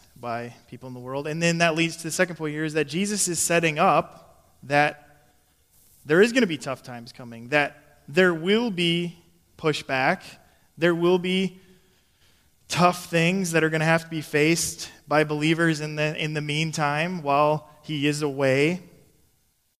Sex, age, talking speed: male, 20-39, 175 wpm